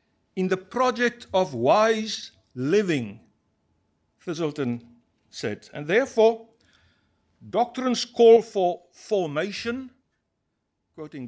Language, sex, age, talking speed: English, male, 60-79, 80 wpm